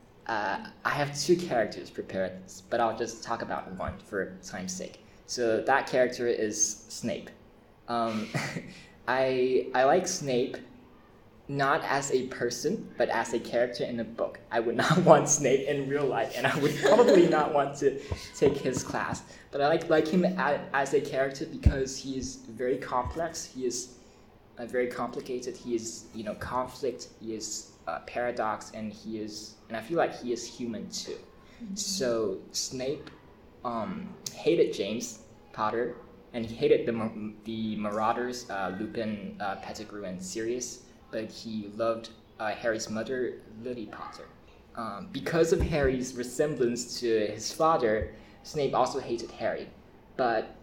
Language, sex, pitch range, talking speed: English, male, 110-135 Hz, 150 wpm